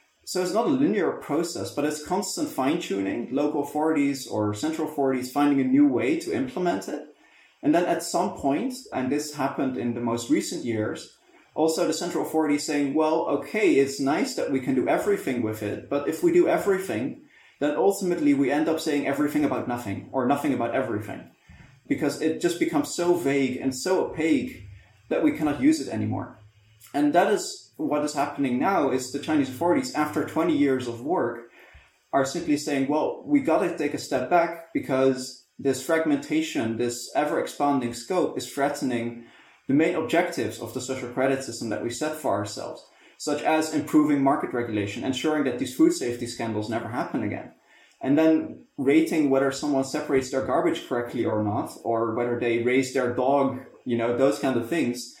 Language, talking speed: English, 185 wpm